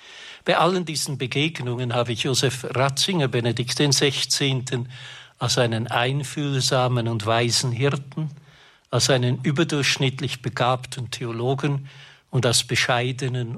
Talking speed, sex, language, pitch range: 105 wpm, male, German, 120-145 Hz